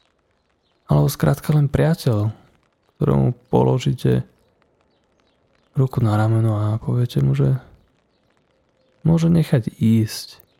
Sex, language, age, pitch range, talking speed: male, Slovak, 20-39, 105-135 Hz, 85 wpm